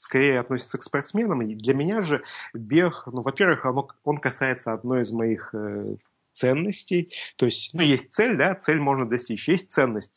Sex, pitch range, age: male, 115-145 Hz, 30-49